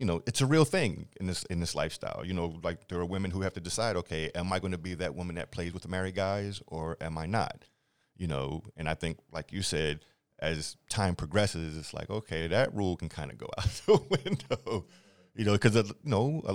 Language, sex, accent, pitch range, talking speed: English, male, American, 85-105 Hz, 250 wpm